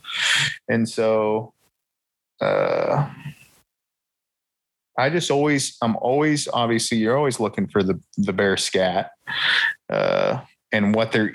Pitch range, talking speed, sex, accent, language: 95-110 Hz, 110 wpm, male, American, English